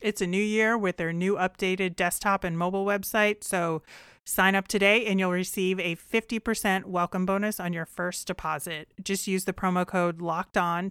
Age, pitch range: 30-49, 175-205 Hz